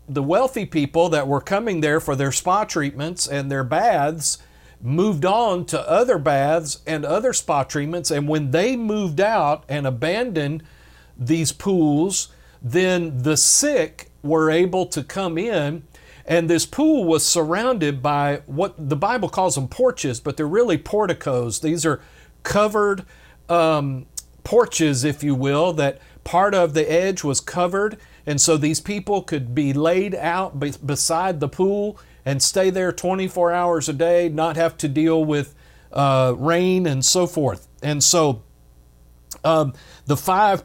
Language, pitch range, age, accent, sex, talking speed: English, 140-180 Hz, 50-69, American, male, 155 wpm